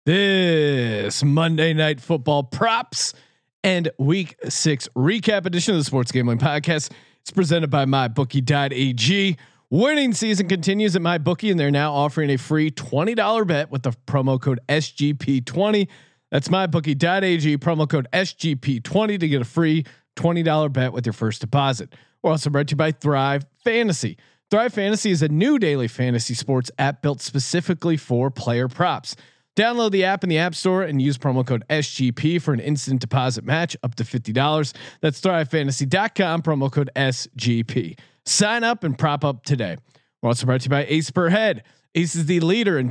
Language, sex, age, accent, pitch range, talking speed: English, male, 40-59, American, 135-170 Hz, 165 wpm